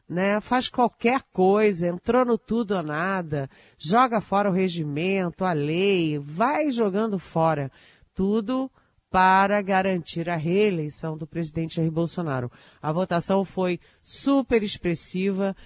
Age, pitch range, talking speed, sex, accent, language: 50-69, 160-200 Hz, 125 wpm, female, Brazilian, Portuguese